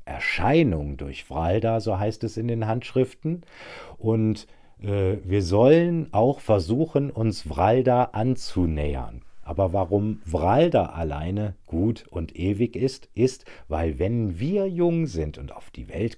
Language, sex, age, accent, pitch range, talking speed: German, male, 50-69, German, 80-120 Hz, 135 wpm